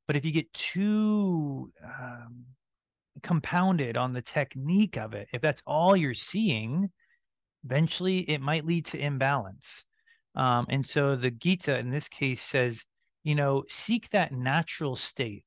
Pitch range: 130-170 Hz